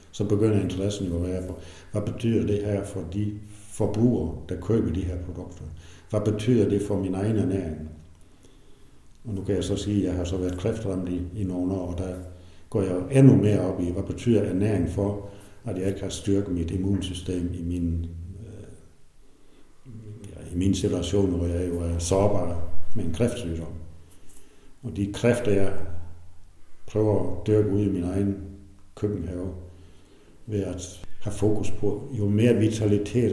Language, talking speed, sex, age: Danish, 170 wpm, male, 60-79